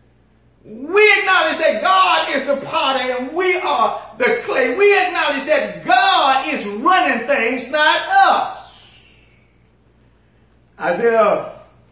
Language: English